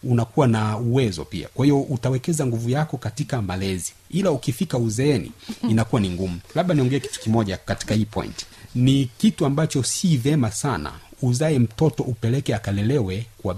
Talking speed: 155 wpm